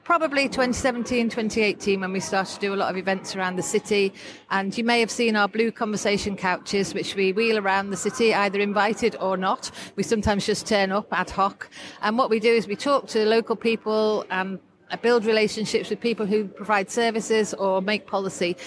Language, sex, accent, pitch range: English, female, British, 195-230 Hz